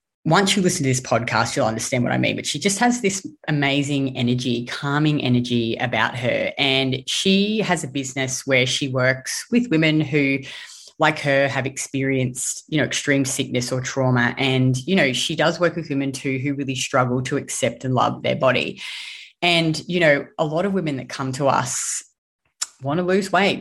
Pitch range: 130-155 Hz